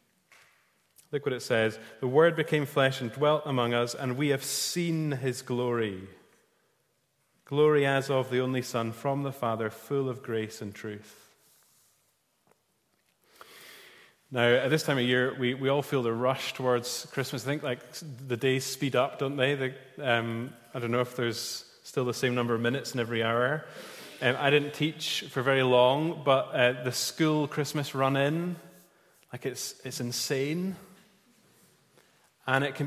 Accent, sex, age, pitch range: British, male, 30-49, 125-145 Hz